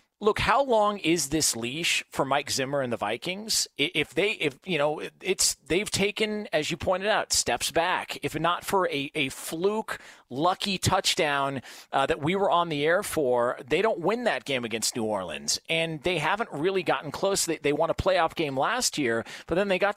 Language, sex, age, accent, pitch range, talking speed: English, male, 40-59, American, 140-210 Hz, 205 wpm